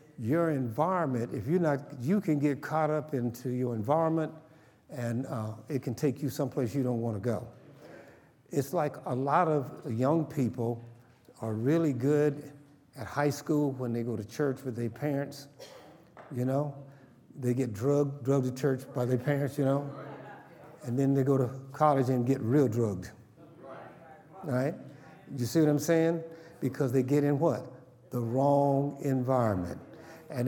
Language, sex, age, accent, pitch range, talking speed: English, male, 60-79, American, 120-145 Hz, 165 wpm